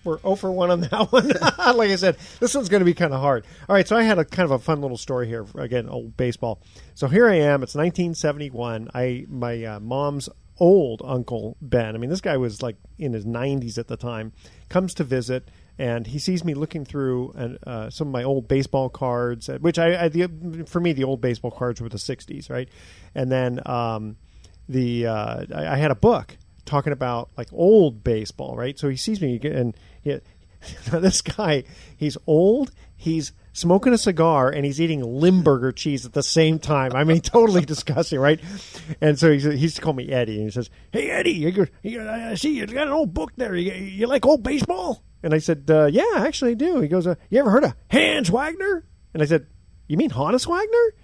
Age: 40-59